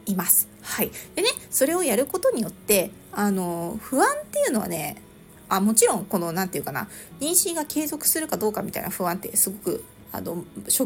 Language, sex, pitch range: Japanese, female, 205-305 Hz